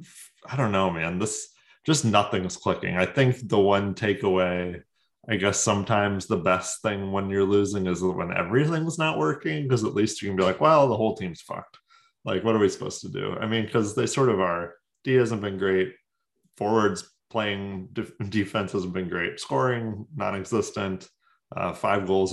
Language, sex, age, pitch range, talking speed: English, male, 20-39, 95-110 Hz, 185 wpm